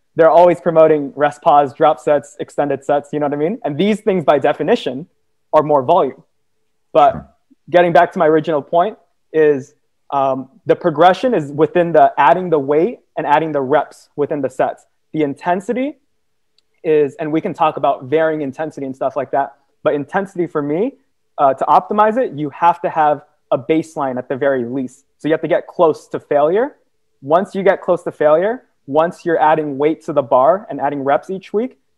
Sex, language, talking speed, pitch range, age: male, English, 195 wpm, 145-175 Hz, 20-39